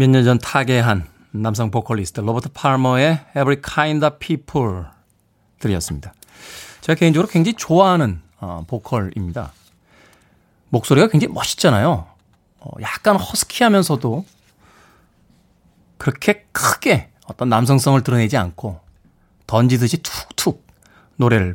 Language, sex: Korean, male